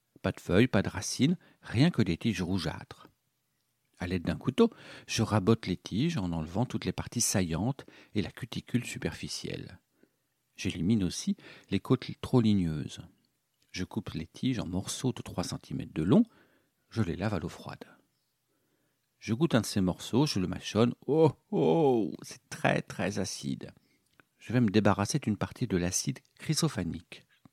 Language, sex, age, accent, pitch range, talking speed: French, male, 50-69, French, 95-130 Hz, 165 wpm